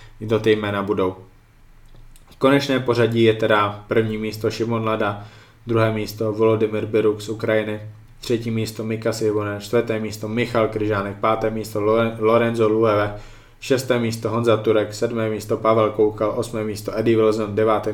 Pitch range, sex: 110-115 Hz, male